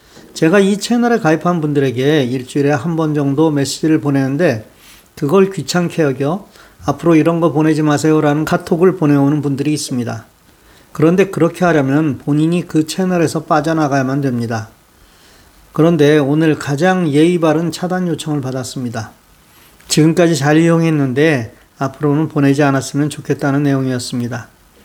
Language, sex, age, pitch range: Korean, male, 40-59, 135-160 Hz